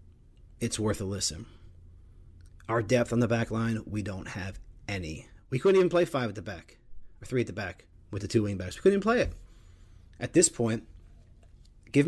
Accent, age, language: American, 40-59, English